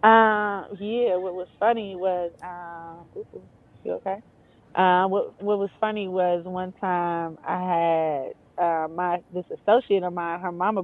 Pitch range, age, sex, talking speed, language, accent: 170-210 Hz, 20-39, female, 150 wpm, English, American